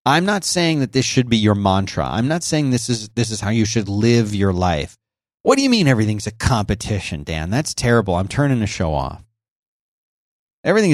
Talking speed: 210 wpm